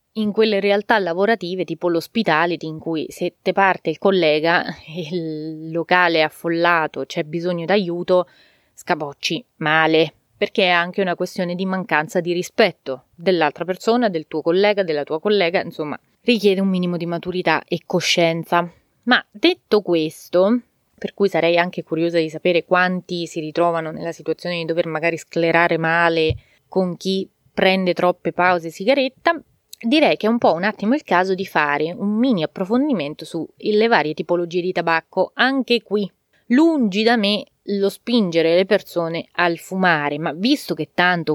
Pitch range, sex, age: 160-200 Hz, female, 20-39